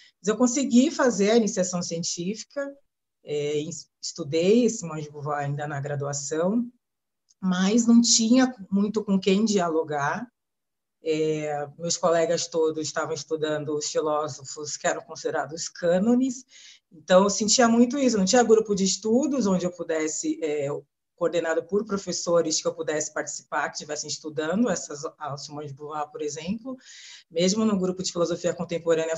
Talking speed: 145 wpm